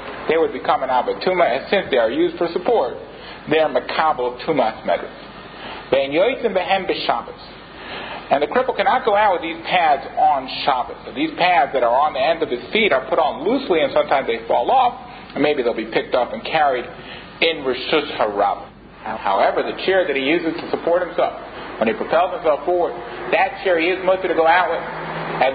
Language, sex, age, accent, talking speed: English, male, 50-69, American, 195 wpm